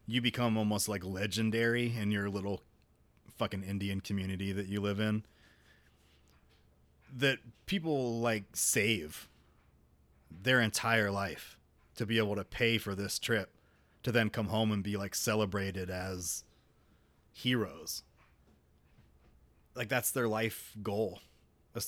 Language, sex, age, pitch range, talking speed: English, male, 30-49, 90-115 Hz, 125 wpm